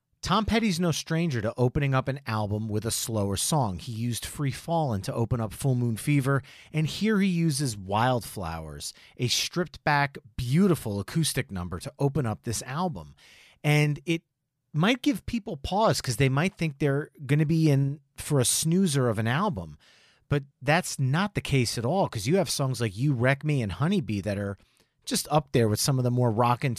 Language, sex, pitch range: English, male, 115-160 Hz